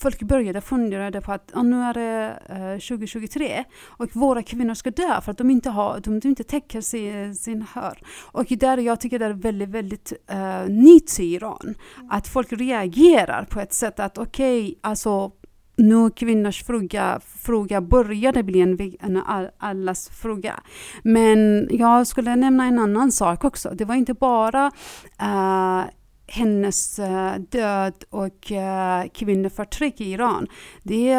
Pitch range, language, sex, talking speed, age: 195-245 Hz, Swedish, female, 140 wpm, 30-49